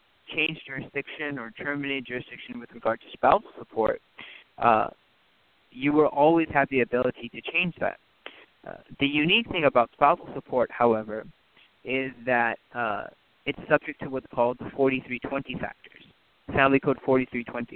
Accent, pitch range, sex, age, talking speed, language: American, 120-140 Hz, male, 30-49, 140 wpm, English